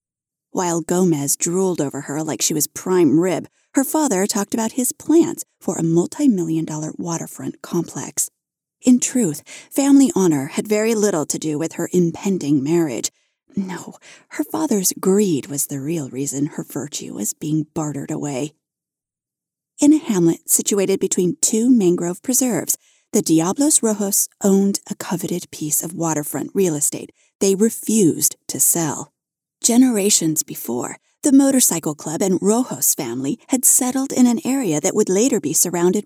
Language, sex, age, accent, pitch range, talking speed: English, female, 30-49, American, 160-240 Hz, 150 wpm